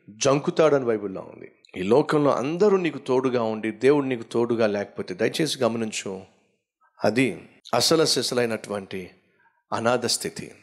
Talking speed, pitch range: 105 wpm, 125-180 Hz